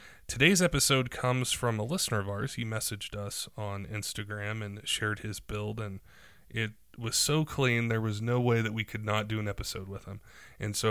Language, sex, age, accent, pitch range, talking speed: English, male, 20-39, American, 105-115 Hz, 205 wpm